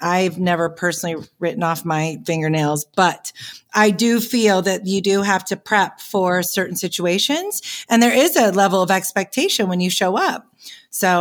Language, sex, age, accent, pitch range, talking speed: English, female, 40-59, American, 175-225 Hz, 170 wpm